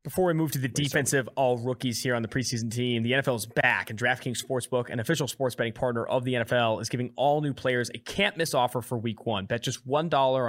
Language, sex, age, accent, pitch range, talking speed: English, male, 20-39, American, 115-150 Hz, 235 wpm